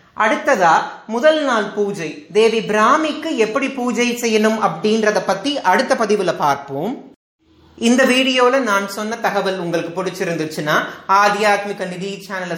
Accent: native